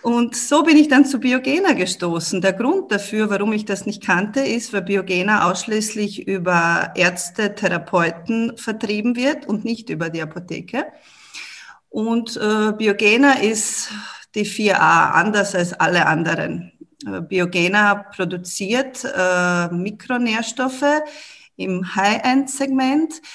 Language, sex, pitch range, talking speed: German, female, 180-230 Hz, 120 wpm